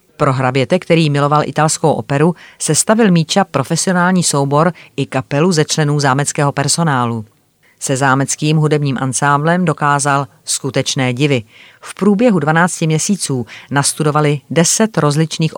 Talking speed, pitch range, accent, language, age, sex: 120 wpm, 135-160 Hz, native, Czech, 30-49, female